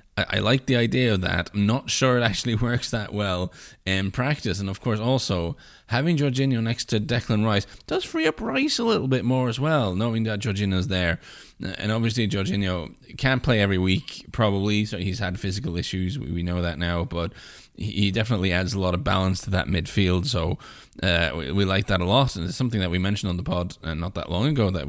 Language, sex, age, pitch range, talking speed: English, male, 20-39, 95-130 Hz, 210 wpm